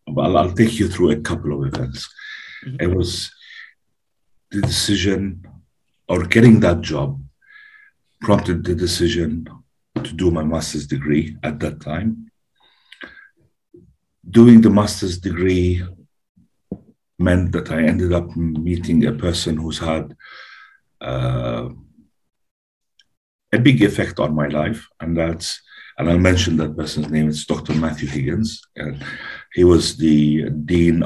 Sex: male